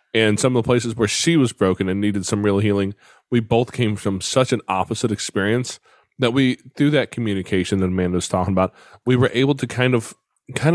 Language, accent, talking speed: English, American, 220 wpm